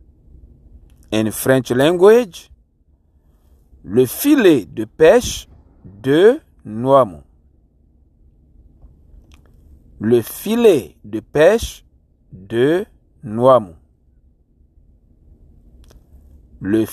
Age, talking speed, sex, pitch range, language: 60-79, 55 wpm, male, 70-110 Hz, English